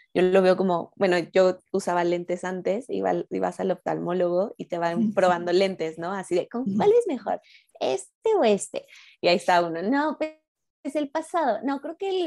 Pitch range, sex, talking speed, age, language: 175-220 Hz, female, 205 wpm, 20-39, Spanish